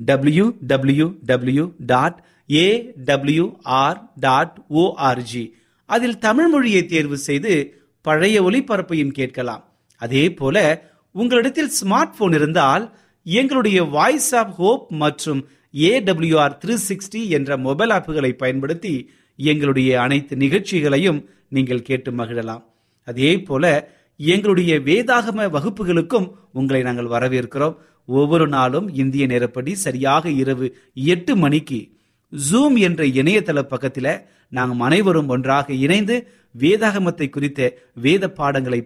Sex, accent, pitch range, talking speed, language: male, native, 125-175 Hz, 90 wpm, Tamil